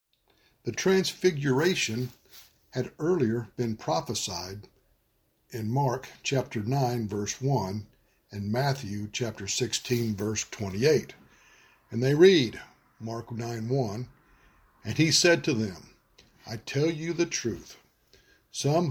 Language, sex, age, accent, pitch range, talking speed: English, male, 60-79, American, 110-150 Hz, 110 wpm